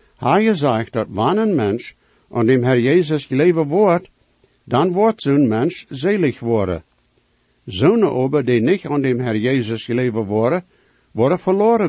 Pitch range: 120-165 Hz